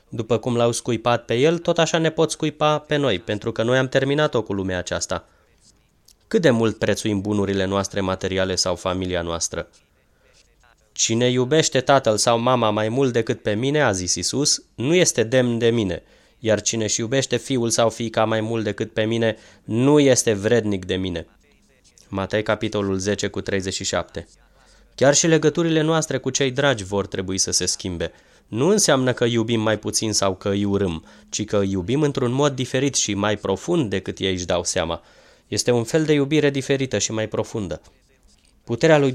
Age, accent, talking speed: 20-39, native, 180 wpm